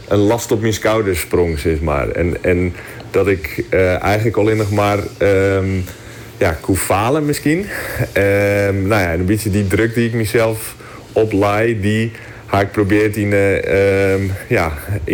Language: Dutch